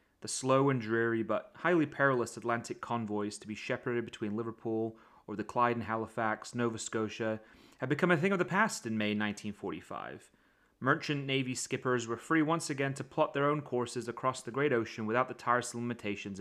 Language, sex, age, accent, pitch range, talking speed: English, male, 30-49, British, 110-140 Hz, 185 wpm